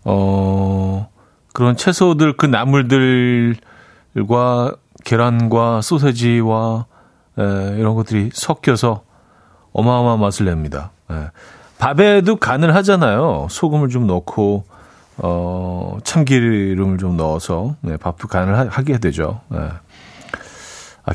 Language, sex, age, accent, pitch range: Korean, male, 40-59, native, 95-140 Hz